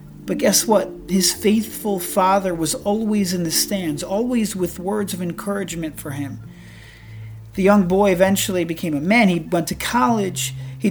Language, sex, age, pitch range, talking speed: English, male, 40-59, 170-215 Hz, 165 wpm